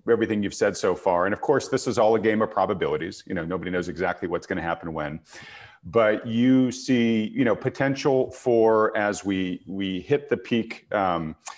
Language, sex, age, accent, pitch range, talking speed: English, male, 40-59, American, 95-115 Hz, 200 wpm